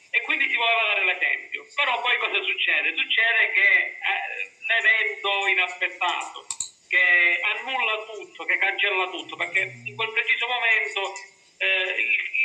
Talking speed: 125 wpm